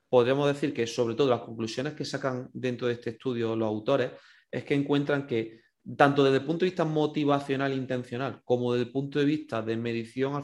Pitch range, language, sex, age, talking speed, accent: 115-145 Hz, Spanish, male, 30-49, 205 wpm, Spanish